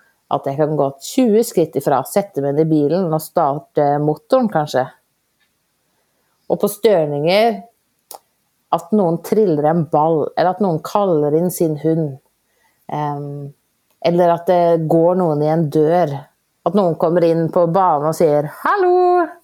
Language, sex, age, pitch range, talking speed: Swedish, female, 30-49, 155-210 Hz, 150 wpm